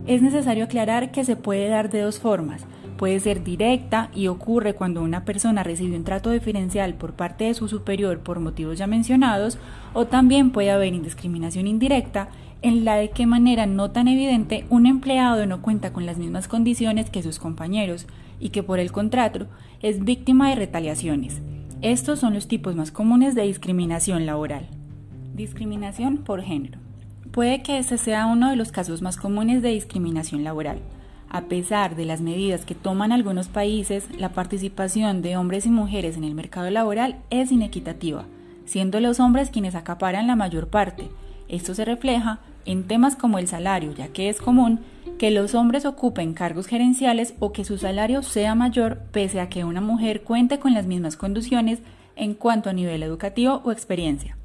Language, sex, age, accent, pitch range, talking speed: Spanish, female, 10-29, Colombian, 175-235 Hz, 175 wpm